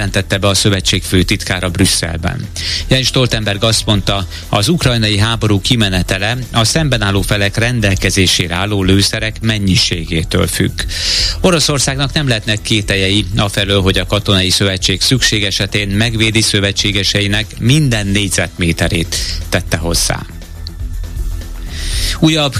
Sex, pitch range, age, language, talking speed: male, 90-110 Hz, 30-49, Hungarian, 100 wpm